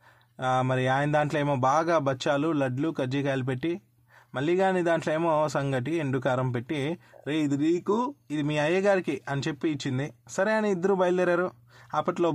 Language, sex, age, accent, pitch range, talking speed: Telugu, male, 20-39, native, 130-170 Hz, 145 wpm